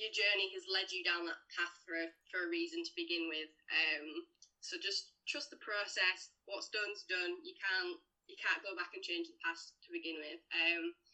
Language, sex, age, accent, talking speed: English, female, 10-29, British, 210 wpm